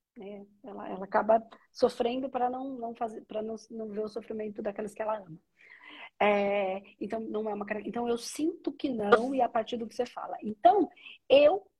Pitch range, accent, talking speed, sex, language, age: 205-275 Hz, Brazilian, 195 wpm, female, Portuguese, 40-59